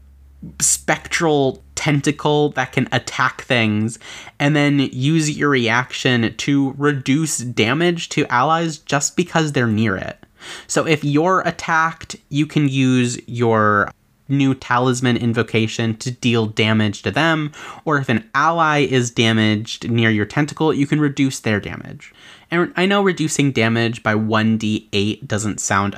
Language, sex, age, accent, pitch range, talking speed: English, male, 30-49, American, 110-150 Hz, 140 wpm